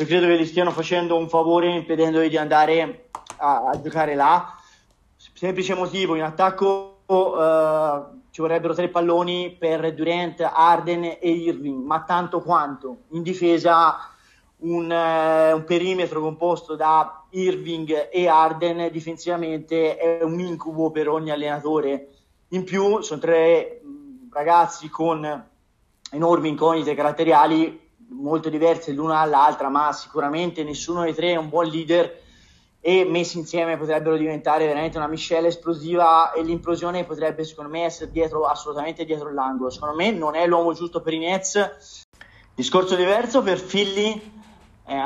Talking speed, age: 140 wpm, 30-49